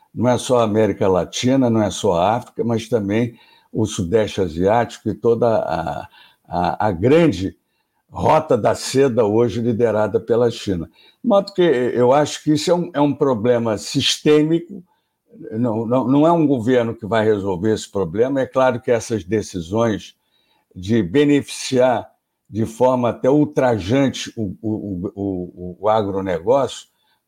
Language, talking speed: Portuguese, 150 wpm